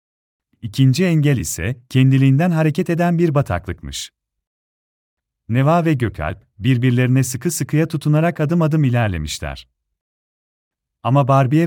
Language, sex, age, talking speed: Turkish, male, 40-59, 105 wpm